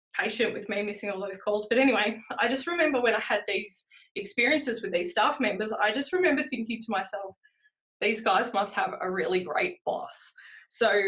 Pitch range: 205-245 Hz